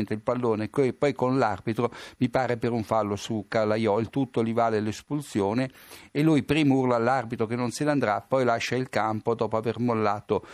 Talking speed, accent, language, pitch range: 200 wpm, native, Italian, 110-135 Hz